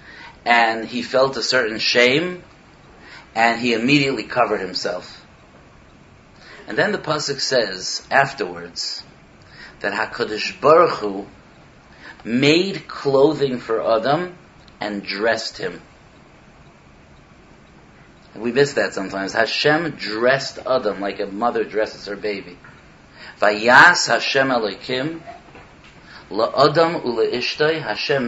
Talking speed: 100 wpm